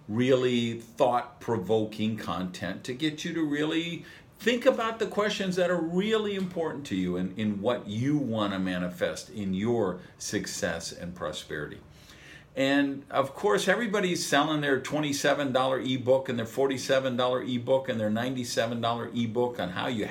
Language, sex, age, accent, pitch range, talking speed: English, male, 50-69, American, 115-160 Hz, 145 wpm